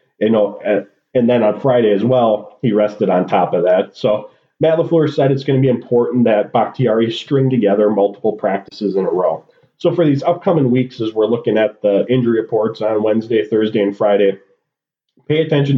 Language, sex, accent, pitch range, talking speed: English, male, American, 110-130 Hz, 195 wpm